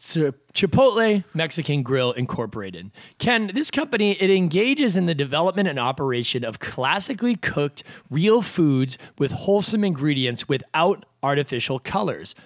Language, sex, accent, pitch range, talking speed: English, male, American, 135-190 Hz, 125 wpm